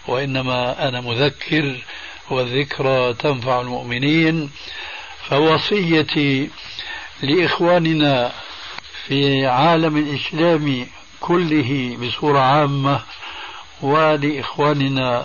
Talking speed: 60 wpm